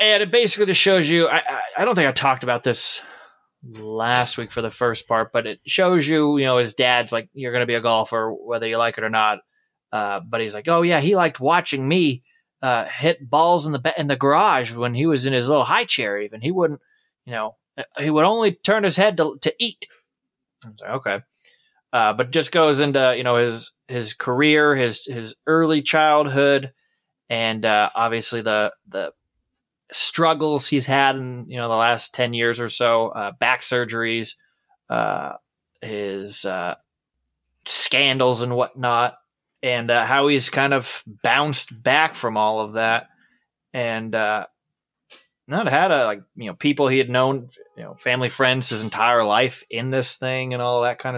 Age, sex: 20-39, male